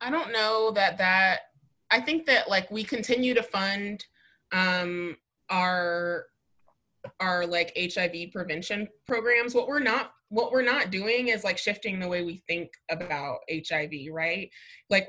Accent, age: American, 20-39